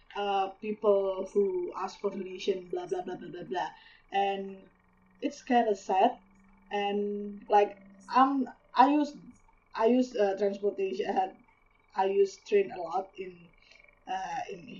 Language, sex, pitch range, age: English, female, 195-245 Hz, 20-39